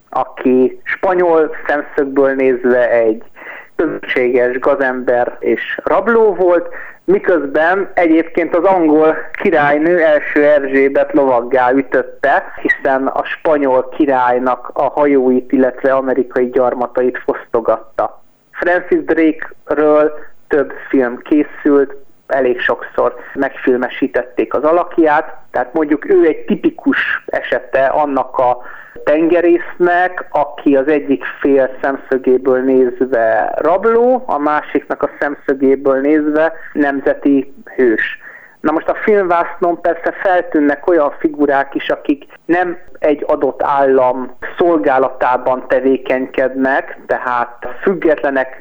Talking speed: 100 wpm